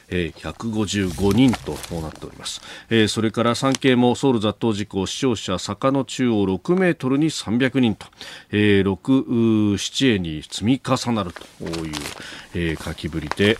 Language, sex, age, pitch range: Japanese, male, 40-59, 95-140 Hz